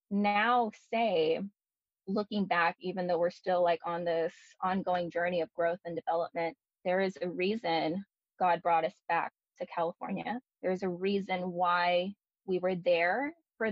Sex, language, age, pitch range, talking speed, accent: female, English, 10-29, 180-210 Hz, 155 wpm, American